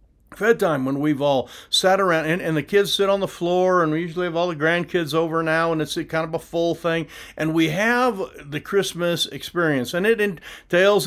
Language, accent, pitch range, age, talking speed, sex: English, American, 145-175 Hz, 50-69, 215 wpm, male